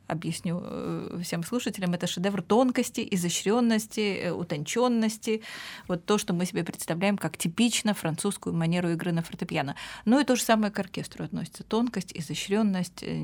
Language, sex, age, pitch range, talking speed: Russian, female, 20-39, 175-220 Hz, 140 wpm